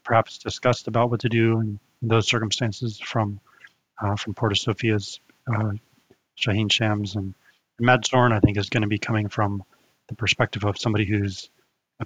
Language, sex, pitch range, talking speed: English, male, 105-120 Hz, 170 wpm